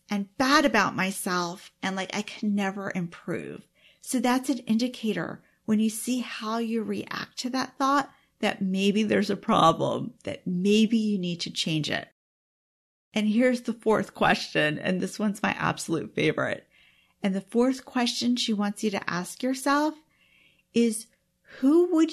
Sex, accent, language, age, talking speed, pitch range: female, American, English, 40-59, 160 wpm, 205-260 Hz